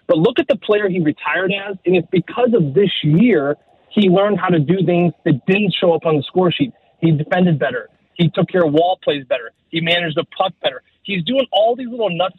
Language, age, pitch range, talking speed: English, 30-49, 165-215 Hz, 235 wpm